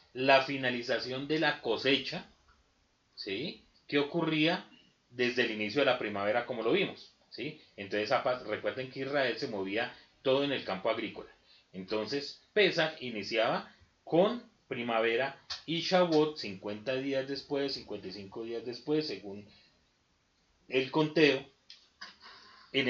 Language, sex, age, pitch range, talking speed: Spanish, male, 30-49, 120-155 Hz, 120 wpm